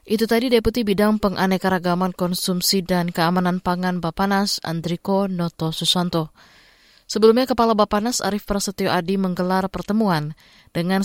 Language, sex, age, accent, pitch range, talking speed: Indonesian, female, 20-39, native, 165-190 Hz, 120 wpm